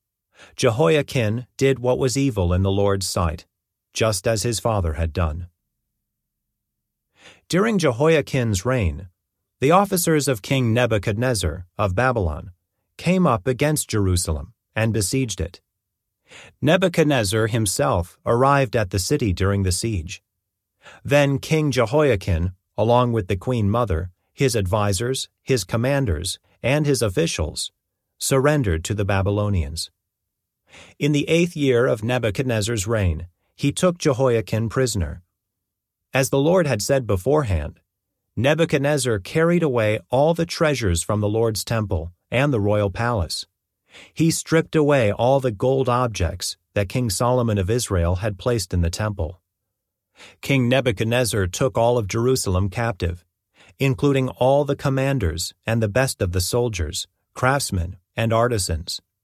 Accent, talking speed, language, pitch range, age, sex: American, 130 wpm, English, 95-130 Hz, 40-59, male